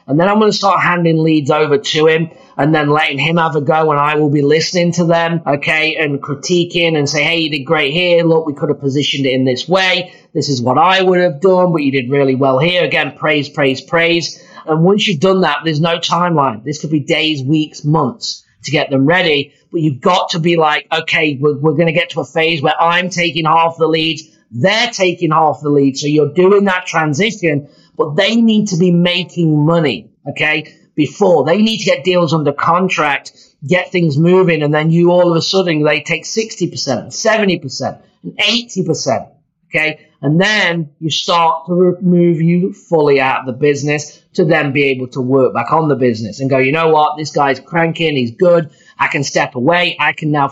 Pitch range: 150-175 Hz